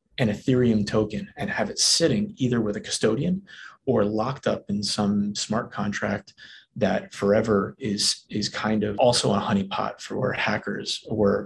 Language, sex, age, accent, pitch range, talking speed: English, male, 30-49, American, 105-130 Hz, 155 wpm